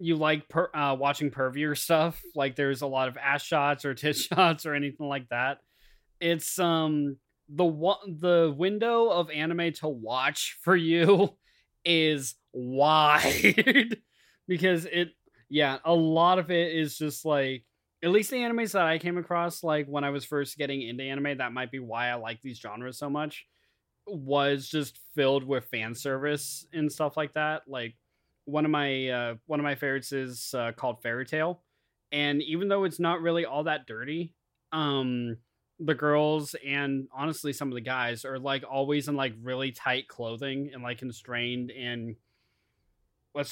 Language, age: English, 20-39